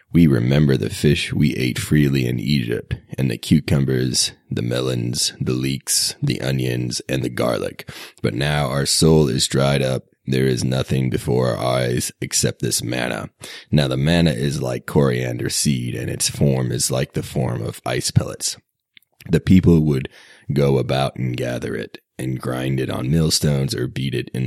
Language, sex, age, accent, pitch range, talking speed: English, male, 30-49, American, 65-75 Hz, 175 wpm